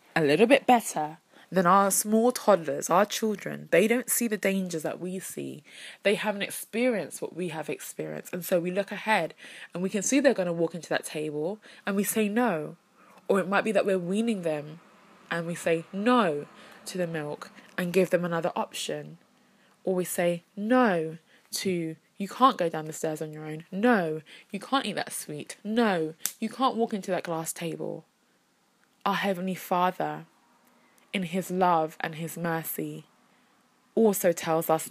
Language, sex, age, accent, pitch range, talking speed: English, female, 20-39, British, 165-210 Hz, 180 wpm